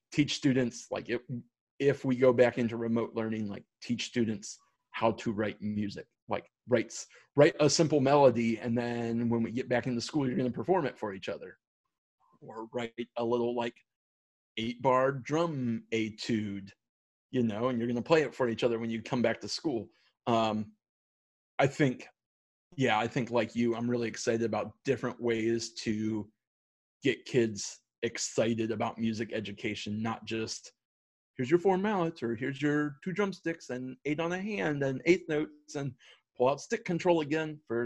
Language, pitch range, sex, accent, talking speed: English, 110-135 Hz, male, American, 180 wpm